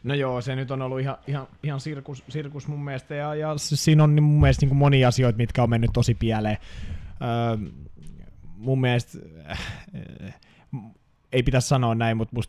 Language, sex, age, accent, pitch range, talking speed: Finnish, male, 20-39, native, 105-130 Hz, 185 wpm